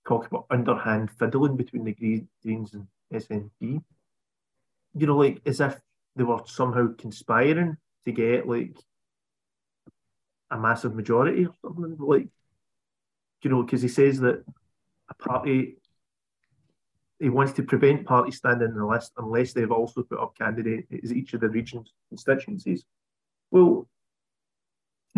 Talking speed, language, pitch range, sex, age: 140 wpm, English, 115-145 Hz, male, 30-49